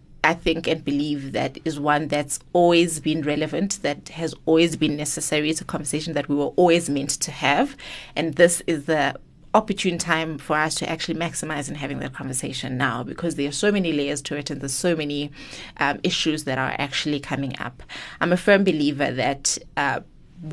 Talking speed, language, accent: 195 wpm, English, South African